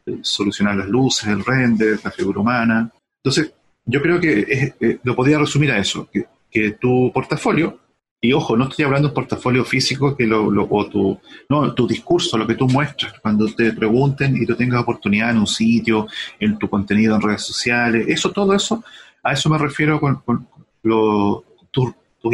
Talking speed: 195 wpm